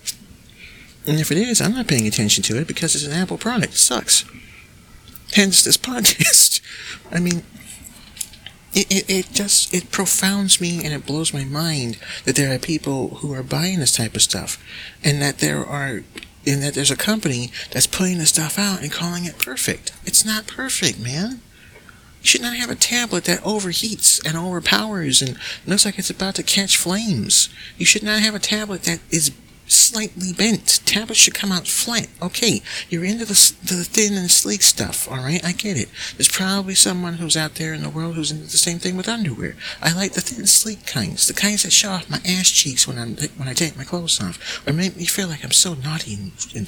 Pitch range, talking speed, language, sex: 145-200 Hz, 210 wpm, English, male